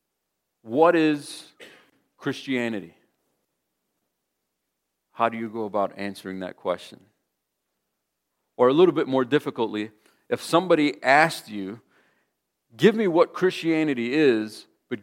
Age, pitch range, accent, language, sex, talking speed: 40-59, 105-145 Hz, American, English, male, 110 wpm